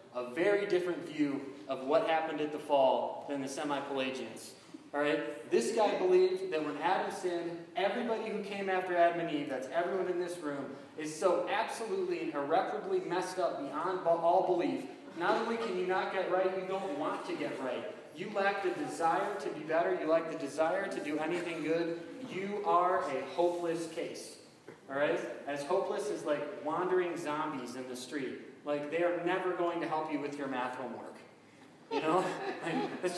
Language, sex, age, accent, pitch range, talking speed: English, male, 20-39, American, 145-190 Hz, 190 wpm